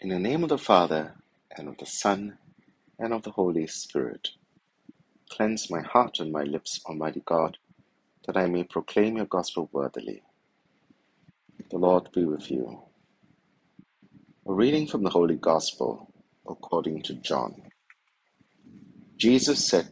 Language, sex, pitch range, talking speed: English, male, 85-110 Hz, 140 wpm